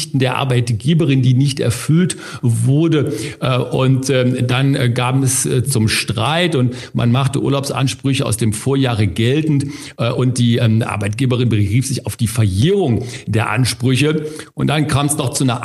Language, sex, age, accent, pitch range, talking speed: German, male, 50-69, German, 120-140 Hz, 140 wpm